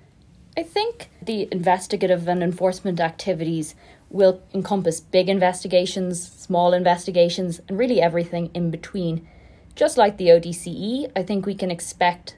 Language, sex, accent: English, female, Irish